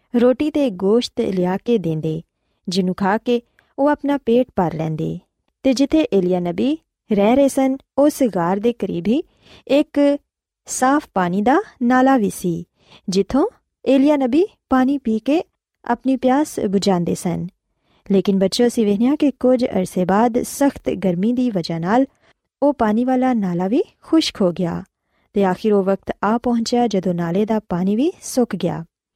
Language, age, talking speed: Punjabi, 20-39, 155 wpm